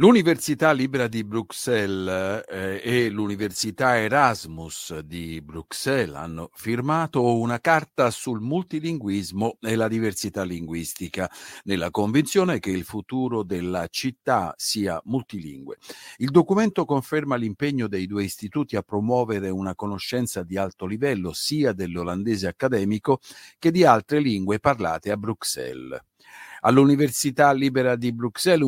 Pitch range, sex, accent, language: 100-140 Hz, male, native, Italian